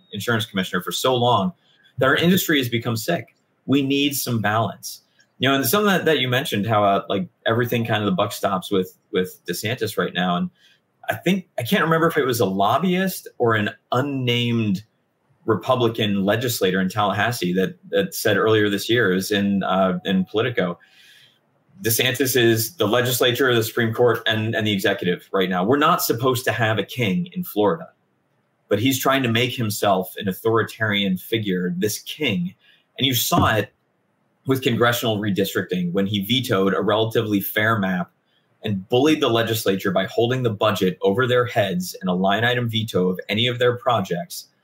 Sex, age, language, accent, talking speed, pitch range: male, 30-49, English, American, 180 wpm, 100-130 Hz